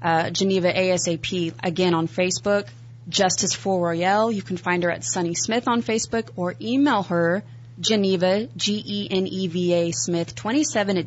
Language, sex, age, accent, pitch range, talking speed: English, female, 20-39, American, 165-200 Hz, 135 wpm